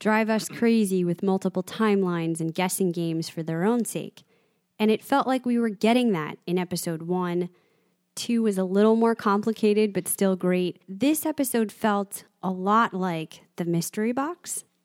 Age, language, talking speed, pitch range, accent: 20-39, English, 170 wpm, 175-220 Hz, American